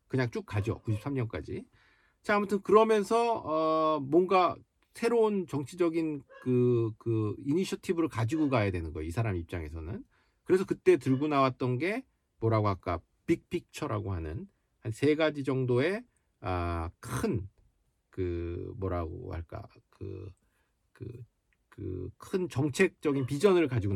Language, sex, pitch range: Korean, male, 100-145 Hz